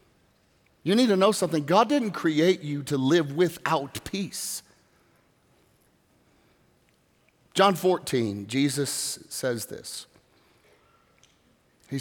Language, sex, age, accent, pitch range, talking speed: English, male, 50-69, American, 140-220 Hz, 95 wpm